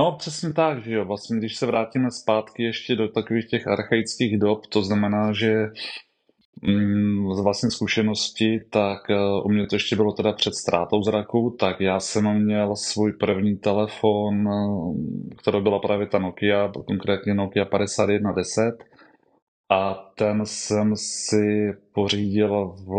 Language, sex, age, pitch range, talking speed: Czech, male, 30-49, 100-110 Hz, 135 wpm